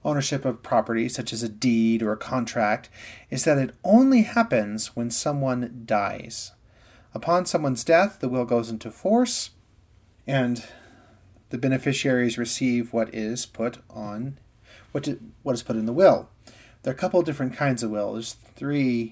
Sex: male